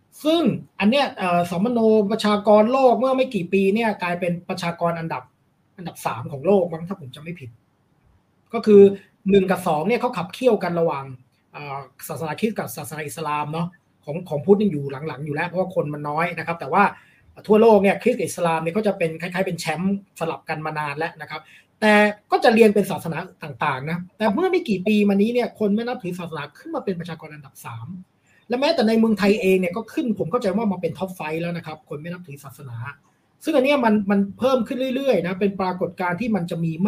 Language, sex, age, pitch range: Thai, male, 20-39, 165-215 Hz